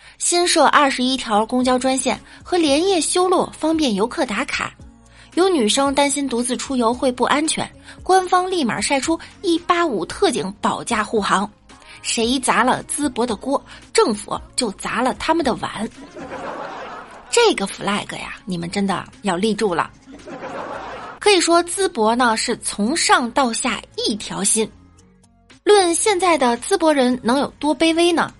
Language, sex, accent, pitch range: Chinese, female, native, 220-325 Hz